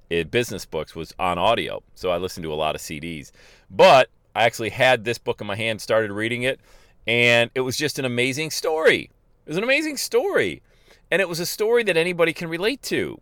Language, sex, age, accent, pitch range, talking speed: English, male, 40-59, American, 95-135 Hz, 215 wpm